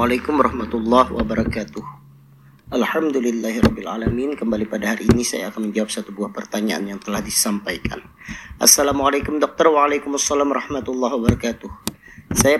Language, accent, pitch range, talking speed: Indonesian, native, 120-150 Hz, 110 wpm